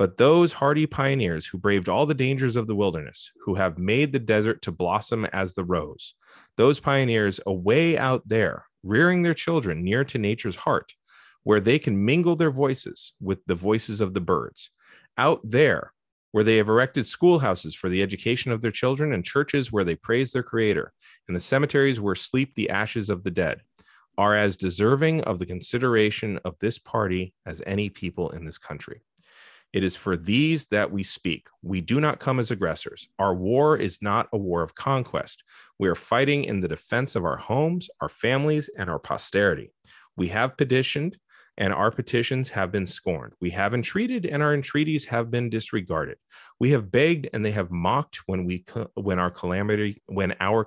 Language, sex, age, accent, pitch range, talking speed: English, male, 30-49, American, 95-135 Hz, 185 wpm